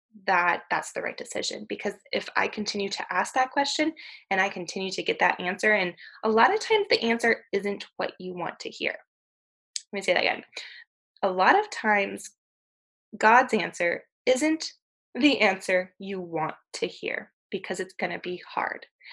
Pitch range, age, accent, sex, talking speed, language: 190-245 Hz, 20-39, American, female, 180 wpm, English